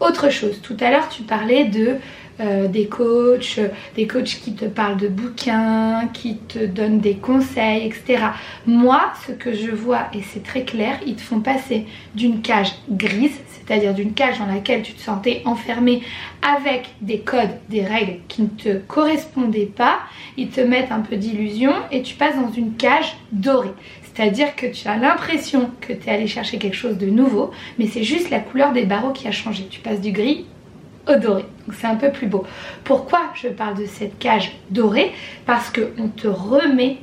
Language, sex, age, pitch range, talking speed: French, female, 20-39, 215-260 Hz, 195 wpm